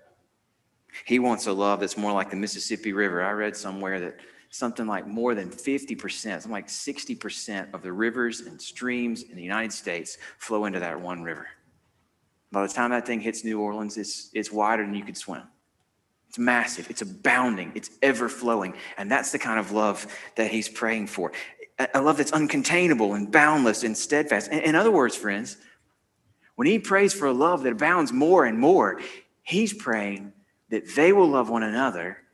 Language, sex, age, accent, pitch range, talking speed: English, male, 30-49, American, 100-125 Hz, 180 wpm